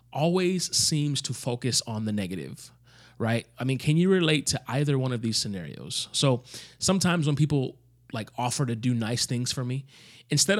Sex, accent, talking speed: male, American, 180 wpm